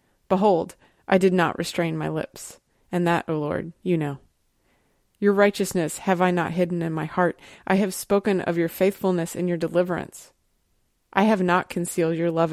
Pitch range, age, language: 165-195 Hz, 30-49, English